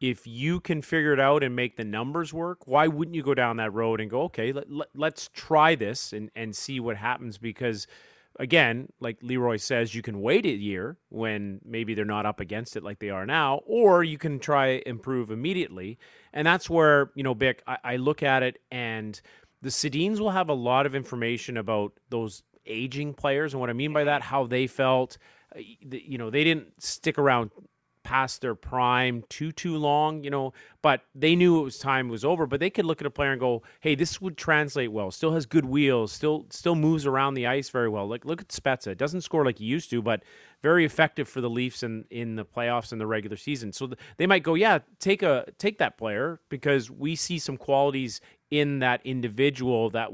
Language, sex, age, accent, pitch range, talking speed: English, male, 30-49, American, 115-150 Hz, 220 wpm